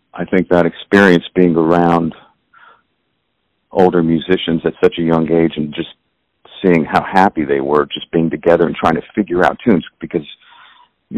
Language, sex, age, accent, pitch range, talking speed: English, male, 50-69, American, 80-95 Hz, 165 wpm